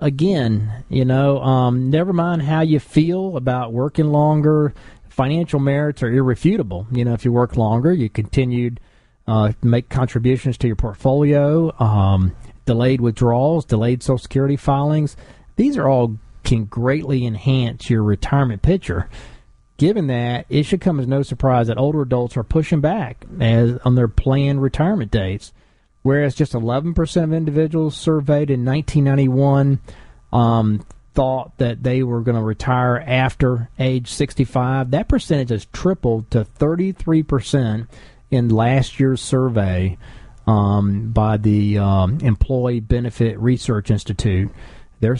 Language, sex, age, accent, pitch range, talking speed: English, male, 40-59, American, 115-145 Hz, 140 wpm